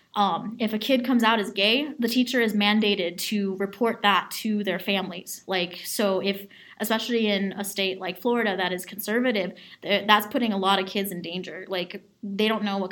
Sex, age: female, 20-39